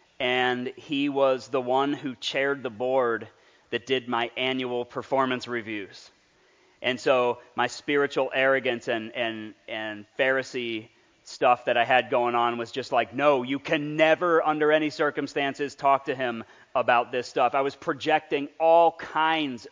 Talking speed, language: 155 wpm, English